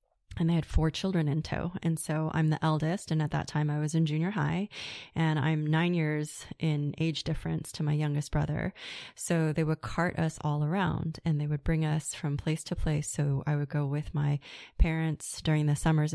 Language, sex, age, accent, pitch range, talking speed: English, female, 20-39, American, 150-165 Hz, 215 wpm